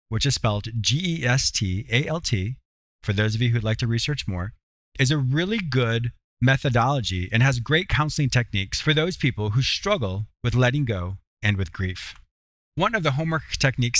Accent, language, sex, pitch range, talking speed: American, English, male, 115-155 Hz, 165 wpm